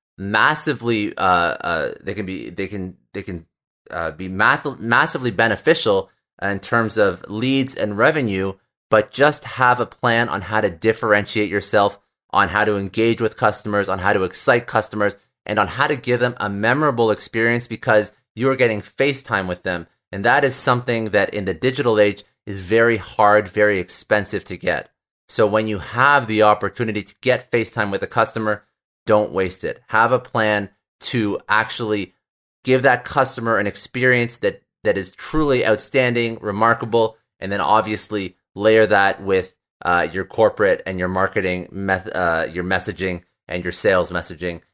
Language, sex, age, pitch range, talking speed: English, male, 30-49, 95-115 Hz, 170 wpm